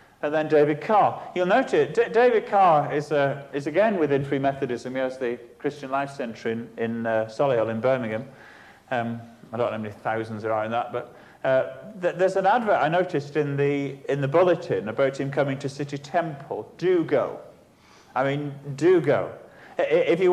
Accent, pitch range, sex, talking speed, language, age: British, 140-175 Hz, male, 190 wpm, English, 40-59